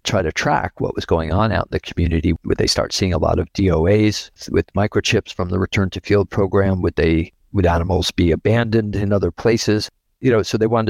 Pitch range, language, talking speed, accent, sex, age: 90-105 Hz, English, 225 wpm, American, male, 50-69